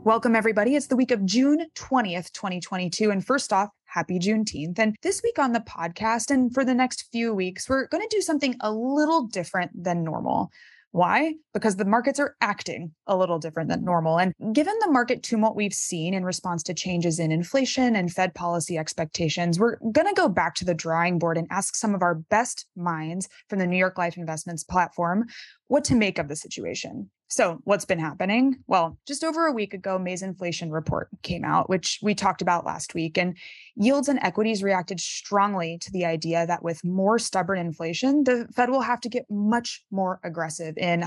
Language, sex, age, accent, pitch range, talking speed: English, female, 20-39, American, 170-230 Hz, 200 wpm